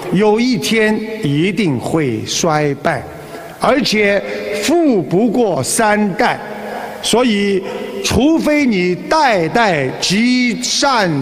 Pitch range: 150-225 Hz